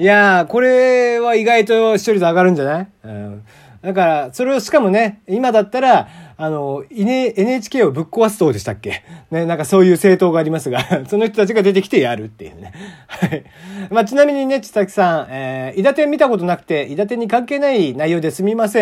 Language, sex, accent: Japanese, male, native